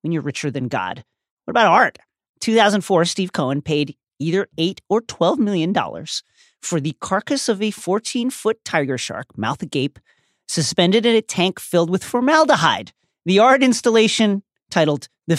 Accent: American